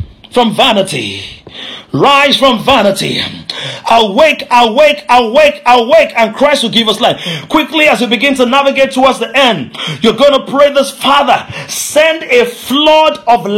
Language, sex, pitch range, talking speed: English, male, 235-295 Hz, 150 wpm